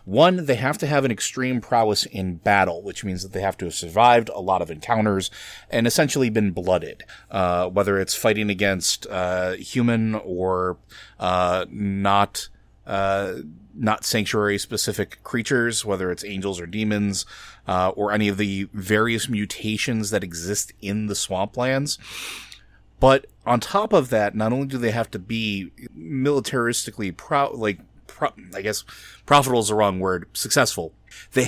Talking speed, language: 155 wpm, English